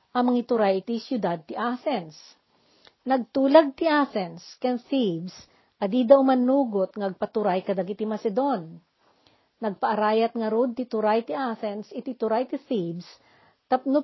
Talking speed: 130 wpm